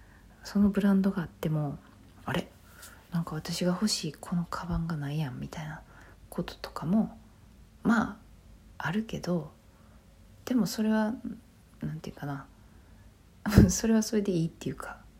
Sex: female